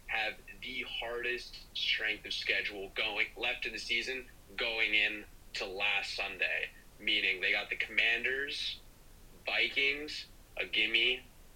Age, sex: 30-49, male